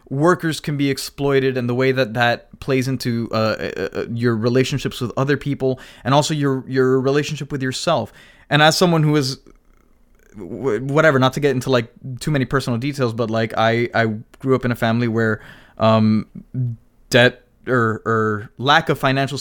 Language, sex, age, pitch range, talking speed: English, male, 20-39, 120-145 Hz, 175 wpm